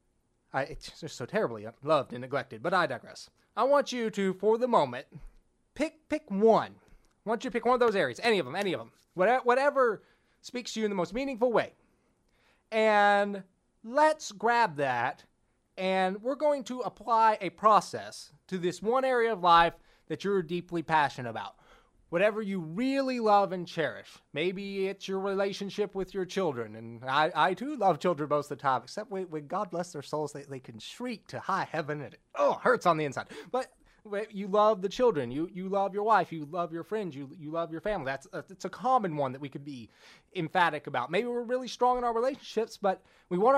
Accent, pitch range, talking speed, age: American, 170-225 Hz, 210 wpm, 30-49